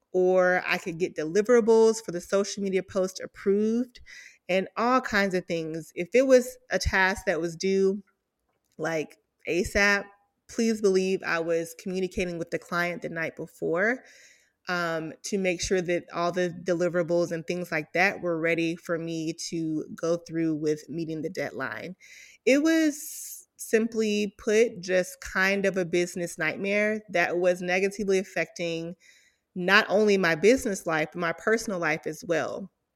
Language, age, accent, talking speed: English, 30-49, American, 155 wpm